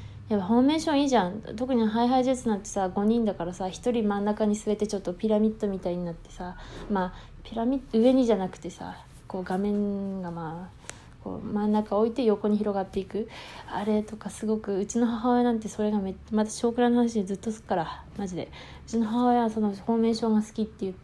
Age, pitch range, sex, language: 20-39, 185-235 Hz, female, Japanese